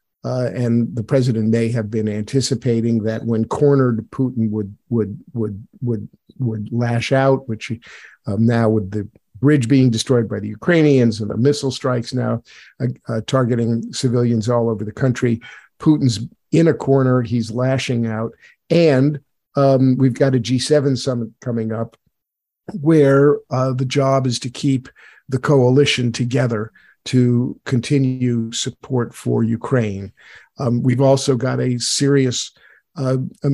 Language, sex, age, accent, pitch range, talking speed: English, male, 50-69, American, 115-135 Hz, 145 wpm